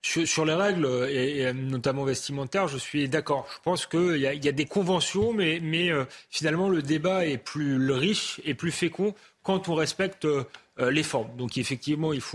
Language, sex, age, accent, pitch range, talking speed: French, male, 30-49, French, 145-180 Hz, 160 wpm